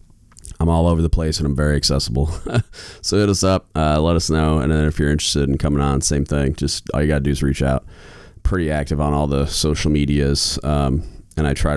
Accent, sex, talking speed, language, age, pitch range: American, male, 240 wpm, English, 30-49, 70-85 Hz